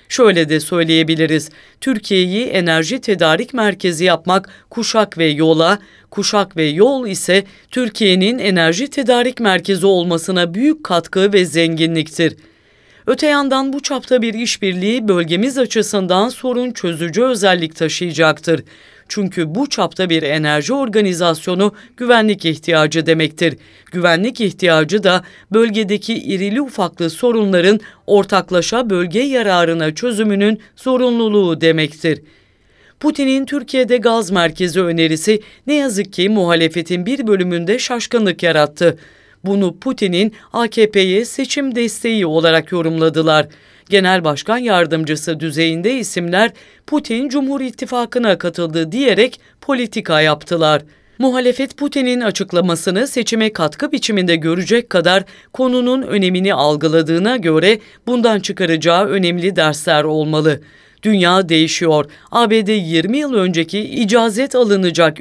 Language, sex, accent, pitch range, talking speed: English, female, Turkish, 165-230 Hz, 105 wpm